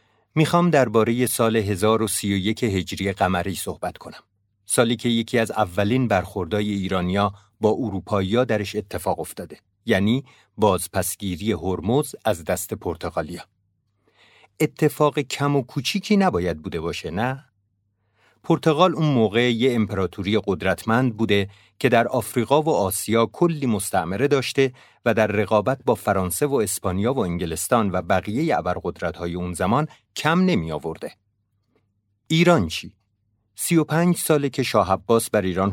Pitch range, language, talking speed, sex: 95-125 Hz, Persian, 130 wpm, male